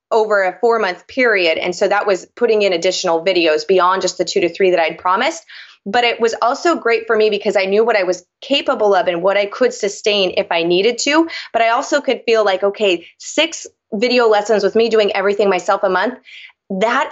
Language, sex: English, female